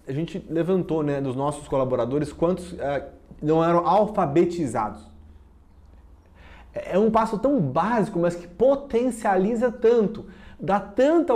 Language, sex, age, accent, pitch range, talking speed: Portuguese, male, 20-39, Brazilian, 155-245 Hz, 120 wpm